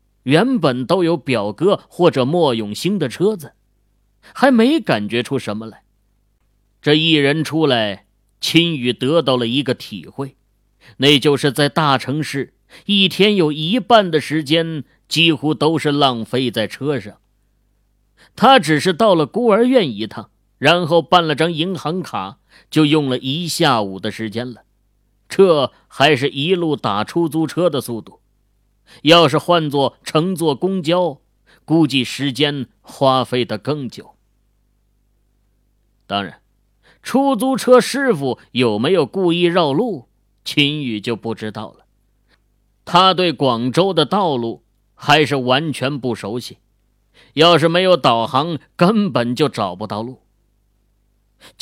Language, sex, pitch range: Chinese, male, 110-165 Hz